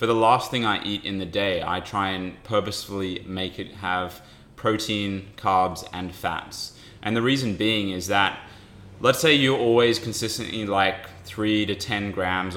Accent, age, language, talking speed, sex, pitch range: Australian, 20-39, English, 170 wpm, male, 95-110 Hz